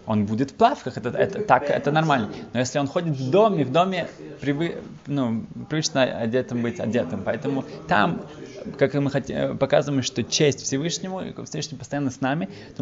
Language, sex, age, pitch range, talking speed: Russian, male, 20-39, 120-150 Hz, 180 wpm